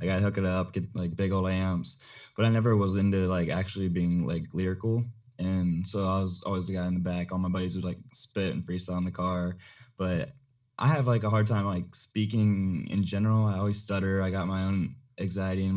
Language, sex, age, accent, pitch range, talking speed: English, male, 20-39, American, 95-110 Hz, 230 wpm